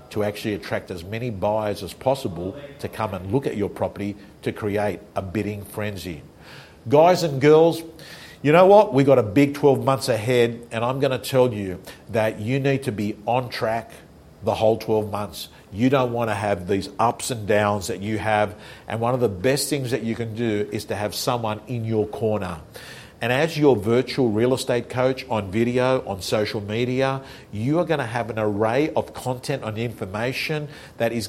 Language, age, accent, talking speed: English, 50-69, Australian, 195 wpm